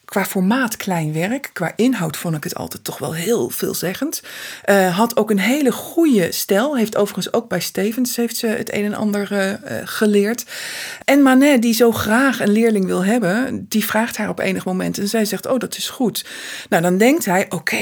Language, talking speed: Dutch, 205 wpm